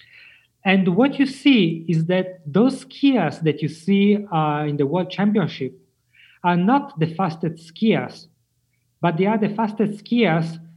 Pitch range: 145-200 Hz